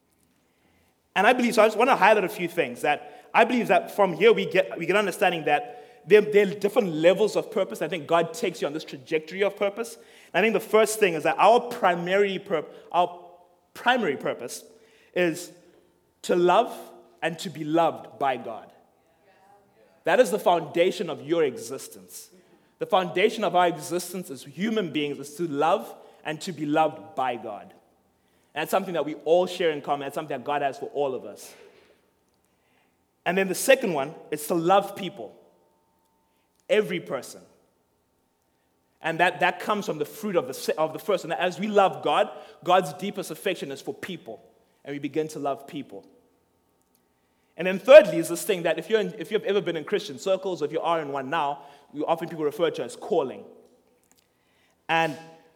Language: English